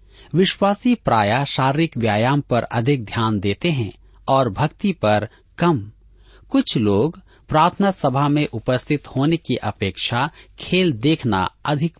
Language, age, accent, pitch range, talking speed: Hindi, 40-59, native, 105-155 Hz, 125 wpm